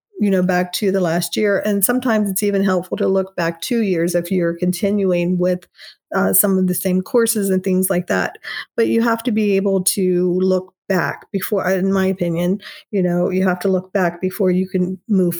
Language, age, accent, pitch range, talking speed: English, 40-59, American, 180-210 Hz, 215 wpm